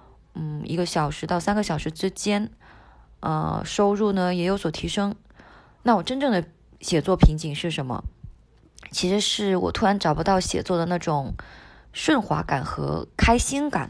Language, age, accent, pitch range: Chinese, 20-39, native, 155-195 Hz